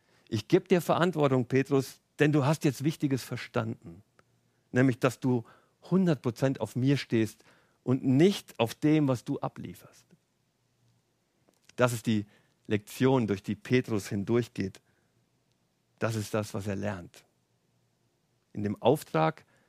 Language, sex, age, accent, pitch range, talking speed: German, male, 50-69, German, 110-155 Hz, 130 wpm